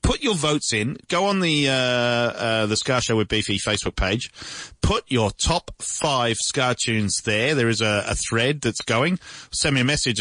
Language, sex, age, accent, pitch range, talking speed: English, male, 40-59, British, 115-145 Hz, 200 wpm